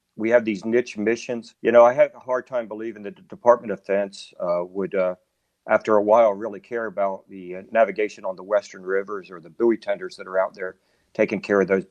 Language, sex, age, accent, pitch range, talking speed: English, male, 50-69, American, 105-125 Hz, 230 wpm